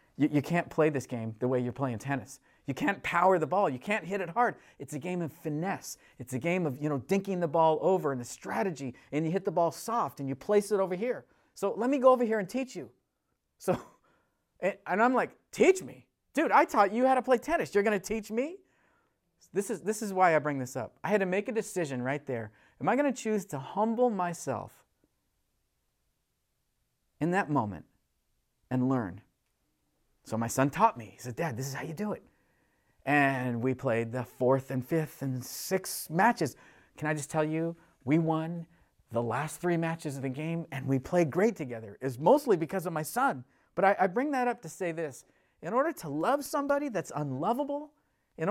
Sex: male